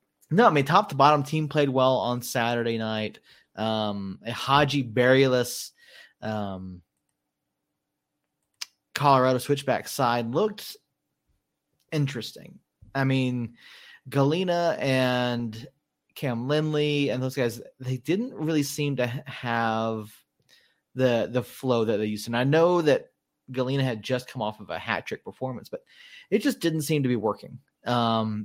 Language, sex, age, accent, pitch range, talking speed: English, male, 30-49, American, 115-145 Hz, 135 wpm